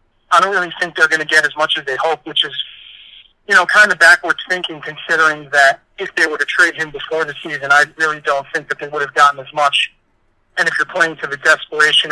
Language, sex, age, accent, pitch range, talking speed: English, male, 40-59, American, 135-165 Hz, 250 wpm